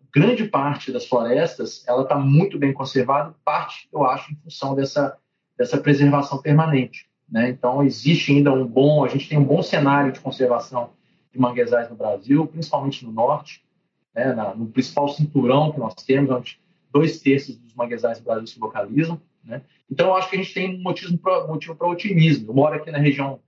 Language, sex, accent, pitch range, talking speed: Portuguese, male, Brazilian, 130-160 Hz, 190 wpm